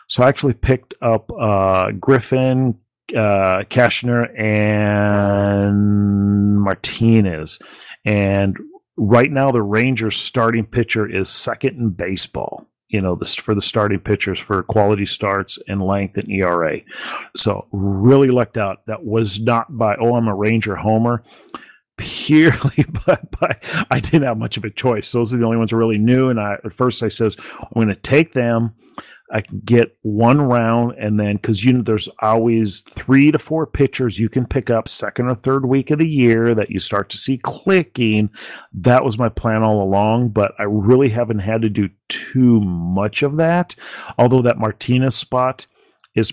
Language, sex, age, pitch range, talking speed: English, male, 40-59, 100-120 Hz, 170 wpm